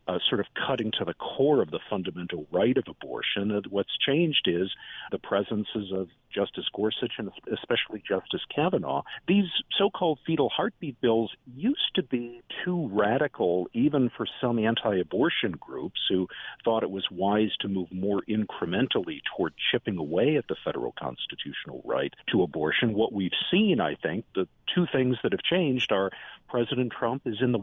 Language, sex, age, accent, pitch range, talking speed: English, male, 50-69, American, 95-130 Hz, 170 wpm